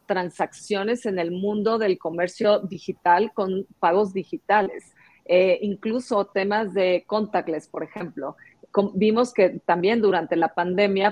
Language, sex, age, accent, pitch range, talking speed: Spanish, female, 40-59, Mexican, 180-210 Hz, 125 wpm